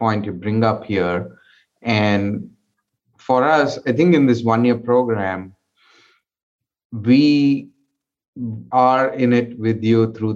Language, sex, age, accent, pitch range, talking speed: English, male, 30-49, Indian, 100-115 Hz, 120 wpm